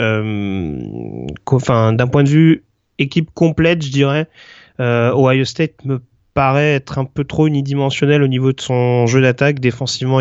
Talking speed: 145 wpm